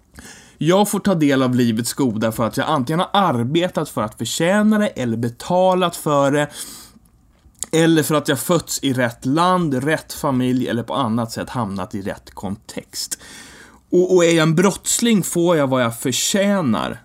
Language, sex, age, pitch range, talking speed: English, male, 30-49, 115-170 Hz, 175 wpm